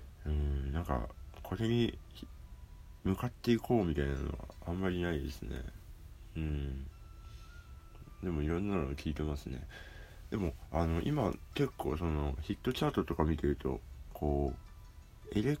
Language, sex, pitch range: Japanese, male, 70-90 Hz